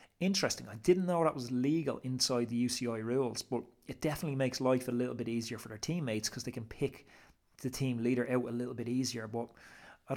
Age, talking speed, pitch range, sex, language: 30-49, 220 wpm, 115-135 Hz, male, English